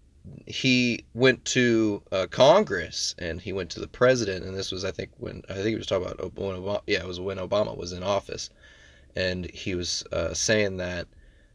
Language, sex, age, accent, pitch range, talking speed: English, male, 30-49, American, 90-115 Hz, 195 wpm